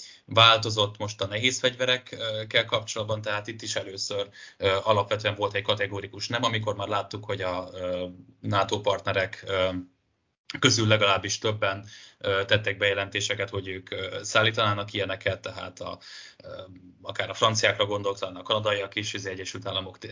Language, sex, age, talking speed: Hungarian, male, 20-39, 125 wpm